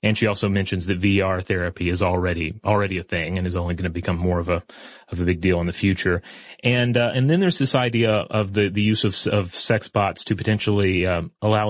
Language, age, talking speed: English, 30-49, 240 wpm